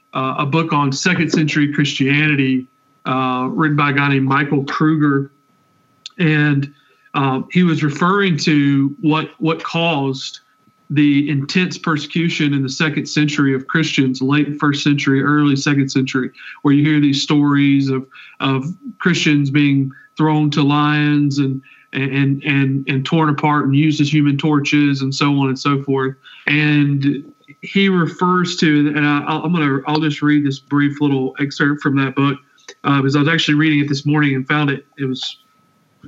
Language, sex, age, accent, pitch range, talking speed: English, male, 40-59, American, 140-160 Hz, 170 wpm